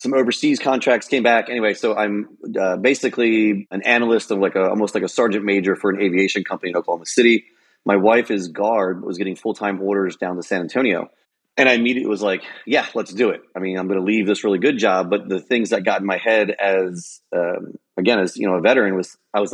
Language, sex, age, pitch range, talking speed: English, male, 30-49, 100-130 Hz, 245 wpm